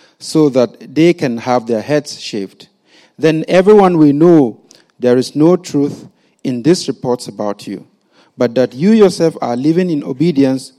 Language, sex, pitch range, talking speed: English, male, 130-175 Hz, 160 wpm